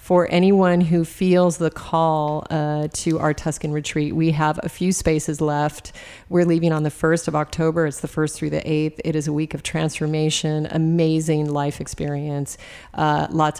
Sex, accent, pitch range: female, American, 150-165 Hz